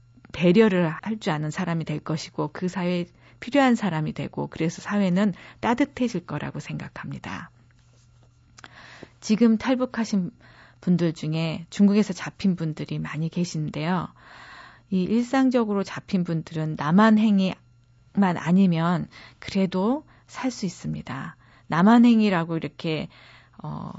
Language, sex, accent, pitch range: Korean, female, native, 155-215 Hz